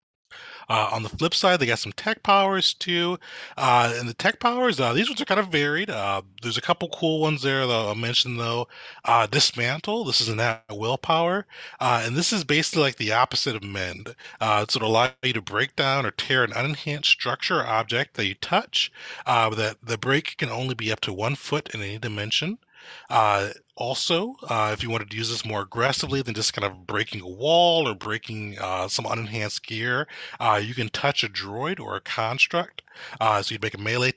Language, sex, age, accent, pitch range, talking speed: English, male, 30-49, American, 105-135 Hz, 215 wpm